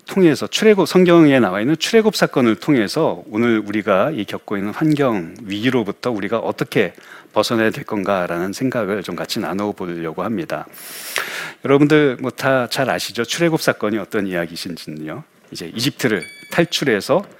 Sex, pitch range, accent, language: male, 110-160 Hz, native, Korean